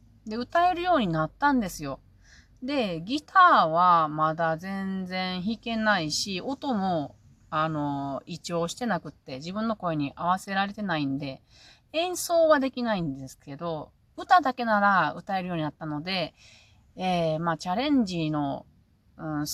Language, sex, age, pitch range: Japanese, female, 30-49, 150-220 Hz